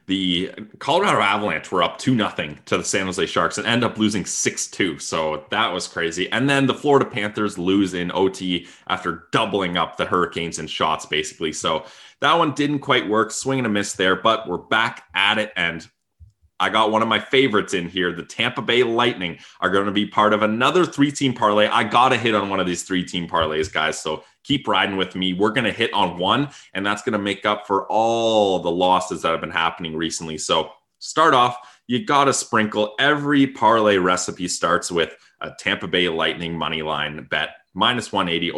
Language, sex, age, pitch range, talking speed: English, male, 20-39, 90-125 Hz, 205 wpm